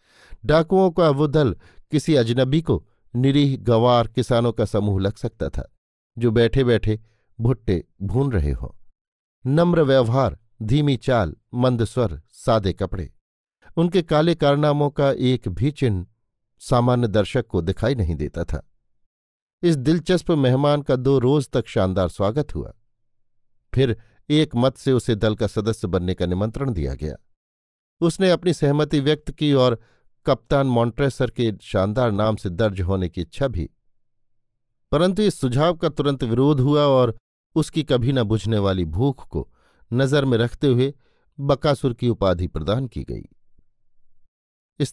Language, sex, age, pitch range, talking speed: Hindi, male, 50-69, 105-140 Hz, 145 wpm